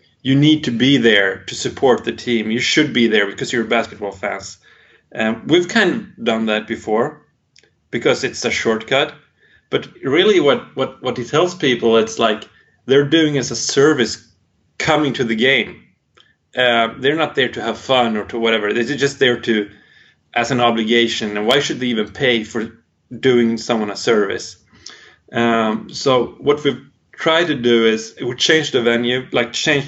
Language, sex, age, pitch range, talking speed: English, male, 30-49, 115-140 Hz, 180 wpm